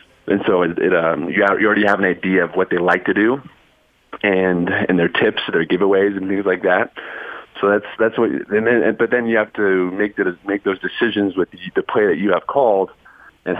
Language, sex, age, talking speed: English, male, 30-49, 225 wpm